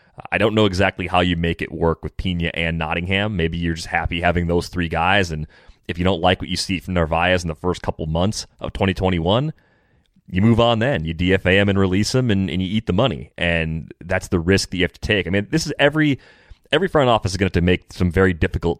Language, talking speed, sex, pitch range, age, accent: English, 255 wpm, male, 85-100 Hz, 30-49, American